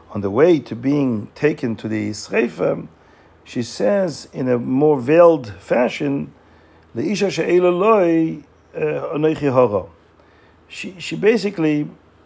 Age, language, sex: 50-69, English, male